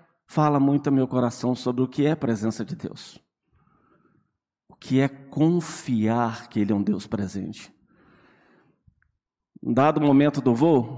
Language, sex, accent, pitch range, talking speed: Portuguese, male, Brazilian, 120-160 Hz, 155 wpm